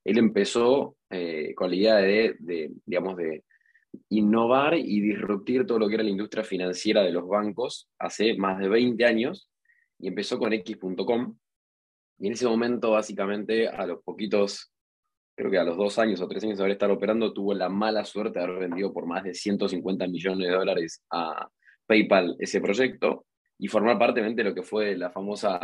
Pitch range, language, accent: 95-115 Hz, Spanish, Argentinian